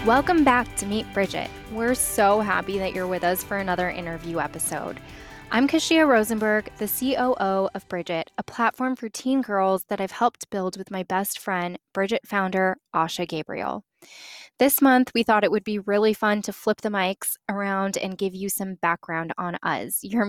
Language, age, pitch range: English, 10-29, 190-235 Hz